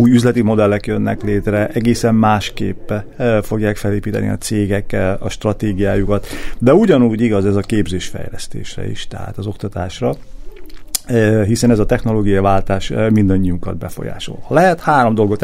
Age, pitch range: 40-59, 100-120 Hz